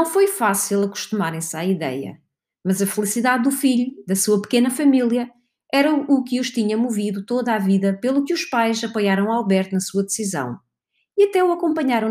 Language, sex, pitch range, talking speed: English, female, 195-250 Hz, 185 wpm